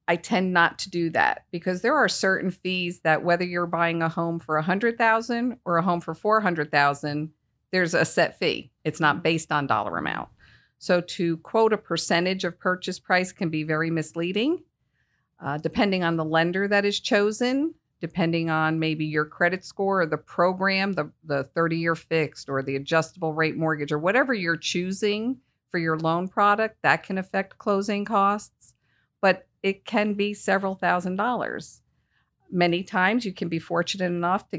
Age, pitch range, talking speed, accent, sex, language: 50-69, 155-190 Hz, 175 wpm, American, female, English